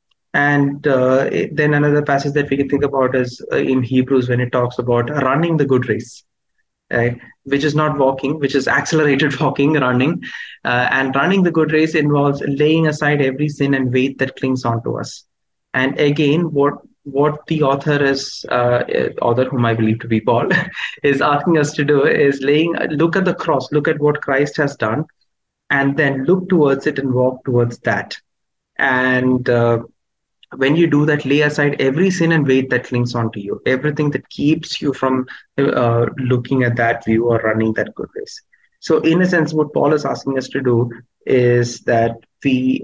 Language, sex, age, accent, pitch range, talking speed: English, male, 30-49, Indian, 125-150 Hz, 190 wpm